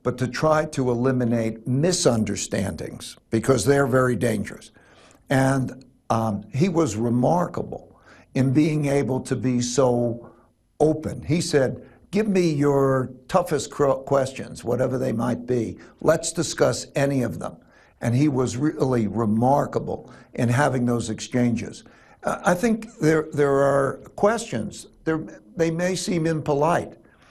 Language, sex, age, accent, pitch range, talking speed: English, male, 60-79, American, 125-155 Hz, 125 wpm